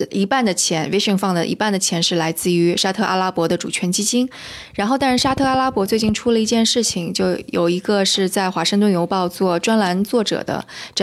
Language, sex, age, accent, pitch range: Chinese, female, 20-39, native, 180-215 Hz